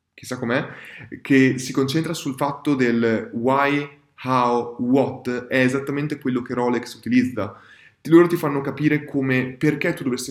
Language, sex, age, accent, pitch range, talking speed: Italian, male, 20-39, native, 125-150 Hz, 145 wpm